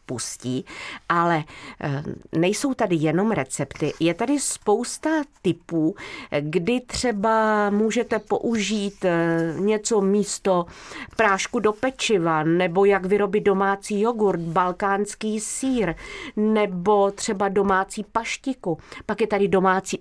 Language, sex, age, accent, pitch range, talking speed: Czech, female, 40-59, native, 155-200 Hz, 100 wpm